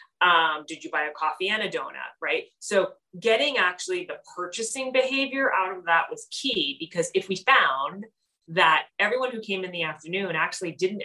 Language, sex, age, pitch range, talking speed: English, female, 20-39, 155-195 Hz, 185 wpm